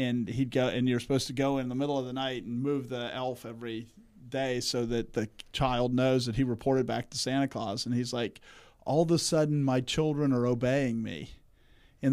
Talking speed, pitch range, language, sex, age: 225 wpm, 125-150 Hz, English, male, 40-59